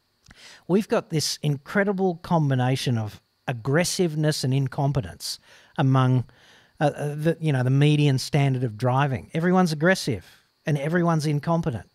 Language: English